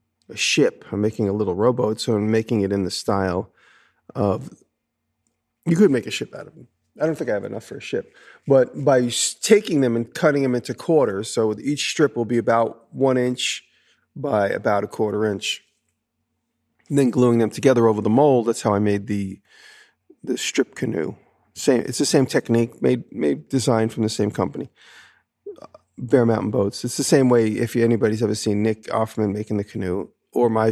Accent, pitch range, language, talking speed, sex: American, 110-135 Hz, English, 195 wpm, male